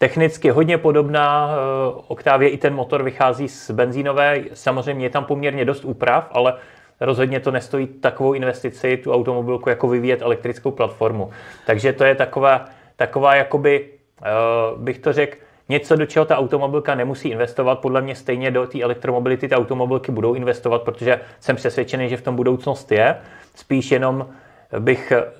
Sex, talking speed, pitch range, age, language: male, 155 wpm, 120-135 Hz, 30-49, Czech